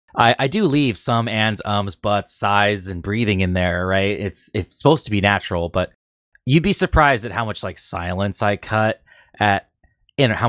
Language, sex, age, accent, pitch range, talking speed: English, male, 20-39, American, 95-125 Hz, 195 wpm